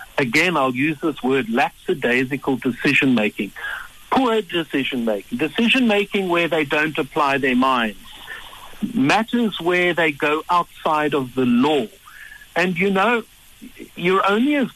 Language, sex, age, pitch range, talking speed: English, male, 60-79, 140-195 Hz, 120 wpm